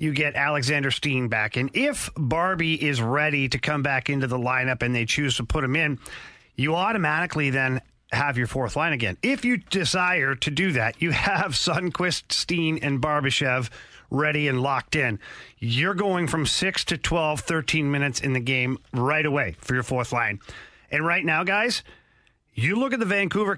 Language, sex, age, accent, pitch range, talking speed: English, male, 40-59, American, 135-170 Hz, 185 wpm